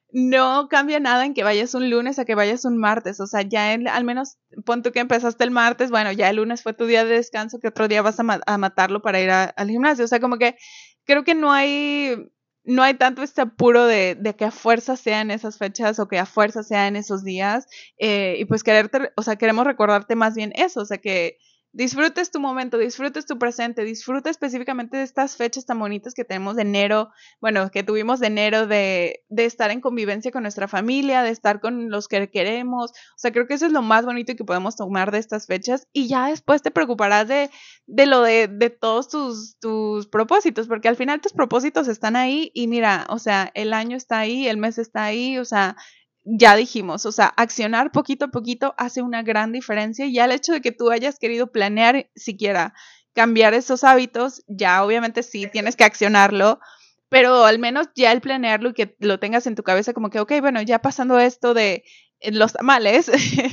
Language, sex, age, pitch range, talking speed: Spanish, female, 20-39, 215-255 Hz, 215 wpm